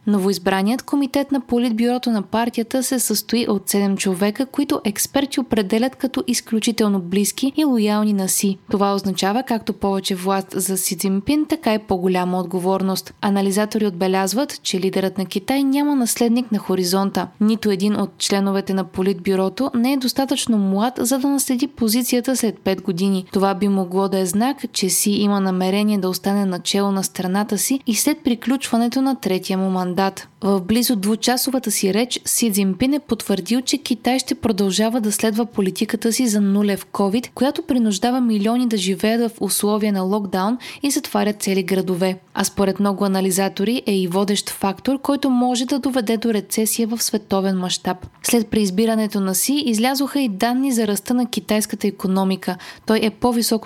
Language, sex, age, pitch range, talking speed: Bulgarian, female, 20-39, 195-245 Hz, 165 wpm